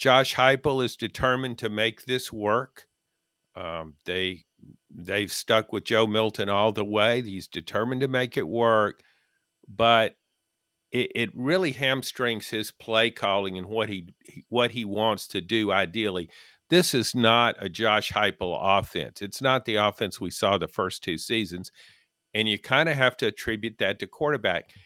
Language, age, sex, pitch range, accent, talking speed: English, 50-69, male, 105-130 Hz, American, 165 wpm